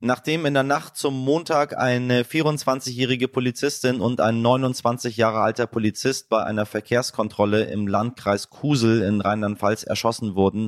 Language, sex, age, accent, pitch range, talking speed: German, male, 30-49, German, 100-130 Hz, 140 wpm